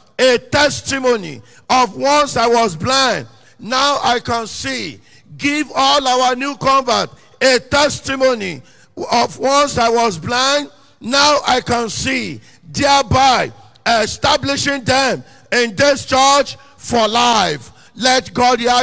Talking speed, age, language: 120 wpm, 50-69, English